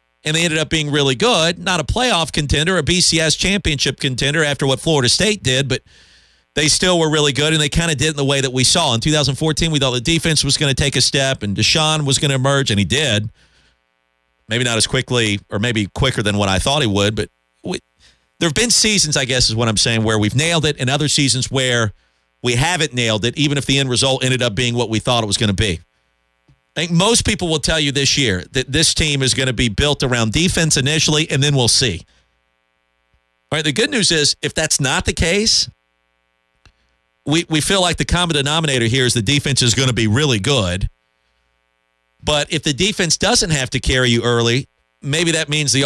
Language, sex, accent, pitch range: English, male, American, 110-155 Hz